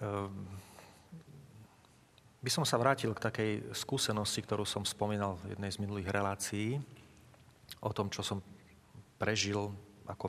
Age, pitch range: 40-59, 100-120 Hz